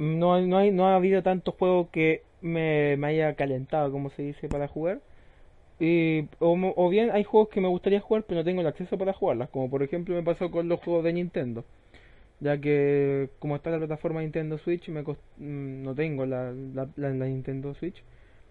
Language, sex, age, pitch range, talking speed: Spanish, male, 20-39, 135-170 Hz, 205 wpm